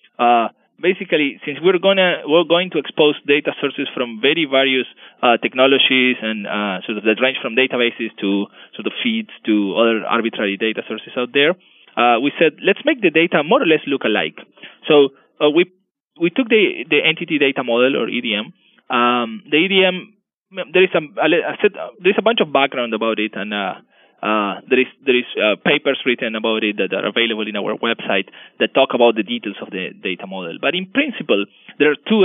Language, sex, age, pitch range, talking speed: English, male, 20-39, 120-185 Hz, 205 wpm